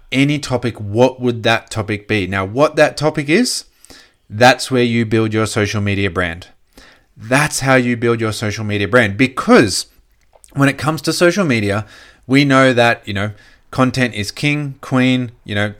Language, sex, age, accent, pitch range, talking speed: English, male, 20-39, Australian, 105-130 Hz, 175 wpm